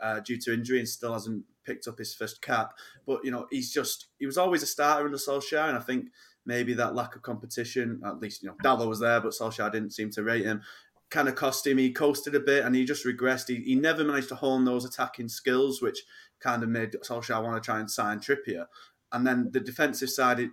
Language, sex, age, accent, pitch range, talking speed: English, male, 20-39, British, 115-130 Hz, 245 wpm